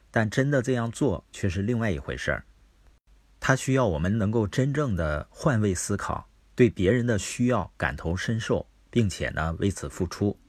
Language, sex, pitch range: Chinese, male, 80-115 Hz